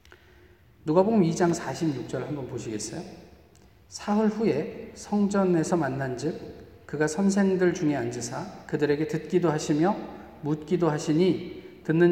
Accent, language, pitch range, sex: native, Korean, 145-185 Hz, male